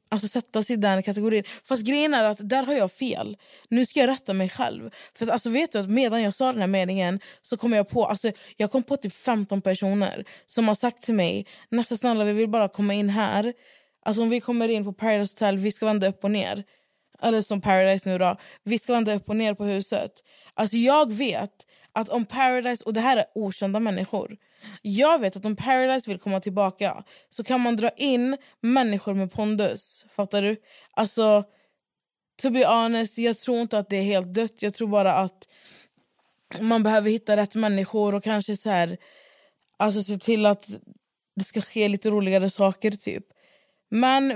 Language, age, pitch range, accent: Swedish, 20-39, 200-235 Hz, native